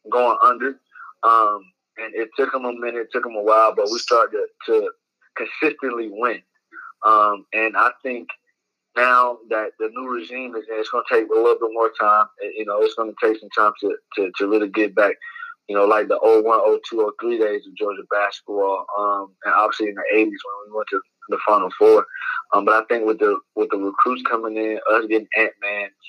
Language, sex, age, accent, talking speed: English, male, 20-39, American, 220 wpm